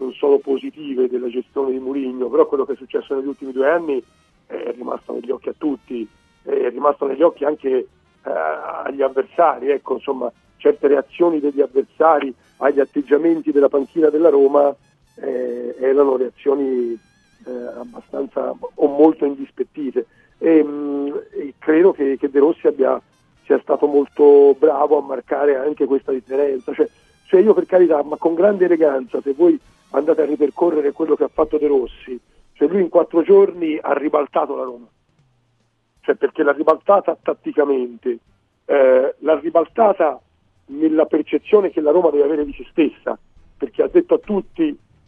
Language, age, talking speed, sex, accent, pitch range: Italian, 50-69, 160 wpm, male, native, 140-210 Hz